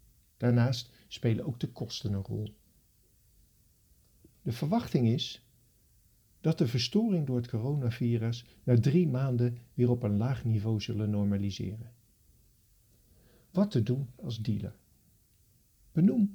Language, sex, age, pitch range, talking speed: Dutch, male, 50-69, 110-140 Hz, 115 wpm